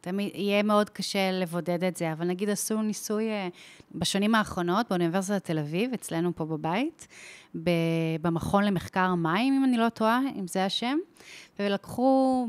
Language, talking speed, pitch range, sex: Hebrew, 145 wpm, 175-215 Hz, female